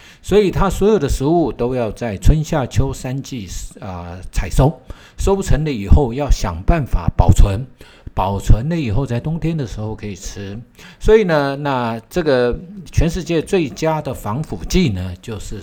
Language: Chinese